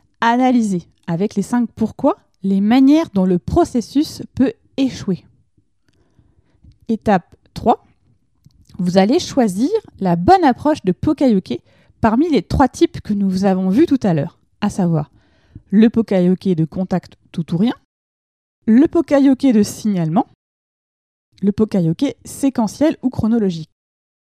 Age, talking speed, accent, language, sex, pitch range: 20-39, 125 wpm, French, French, female, 185-260 Hz